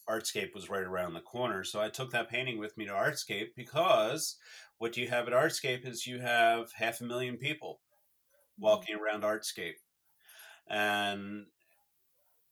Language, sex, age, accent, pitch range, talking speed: English, male, 30-49, American, 105-130 Hz, 155 wpm